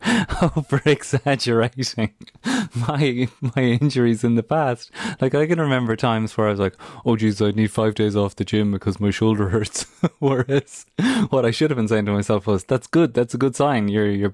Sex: male